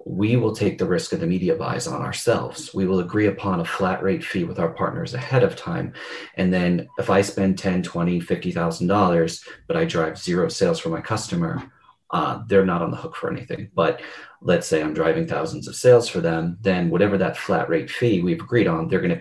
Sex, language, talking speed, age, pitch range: male, English, 220 wpm, 30-49, 90-120 Hz